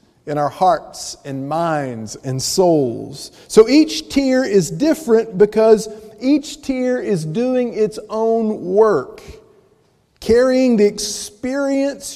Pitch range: 195-250 Hz